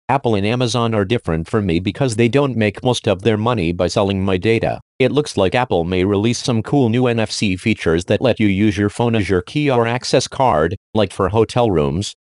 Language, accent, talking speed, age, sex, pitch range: English, American, 225 wpm, 40-59, male, 100-125 Hz